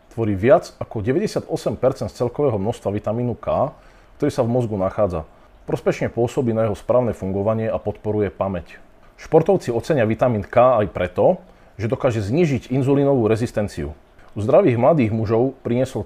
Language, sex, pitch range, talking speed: Slovak, male, 100-130 Hz, 145 wpm